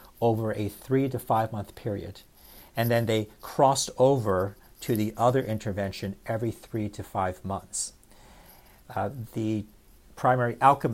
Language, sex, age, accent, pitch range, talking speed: English, male, 50-69, American, 100-120 Hz, 135 wpm